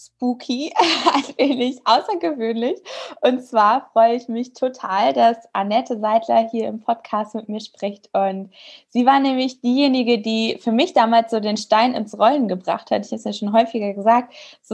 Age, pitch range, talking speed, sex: 20-39, 220-270 Hz, 175 wpm, female